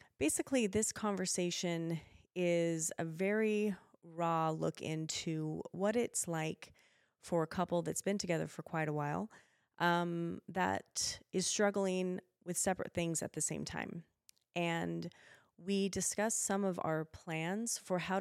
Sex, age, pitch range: female, 30-49, 165-195 Hz